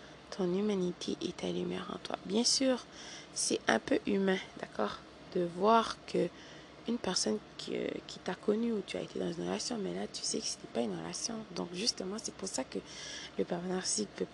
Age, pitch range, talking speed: 20-39, 180-210 Hz, 200 wpm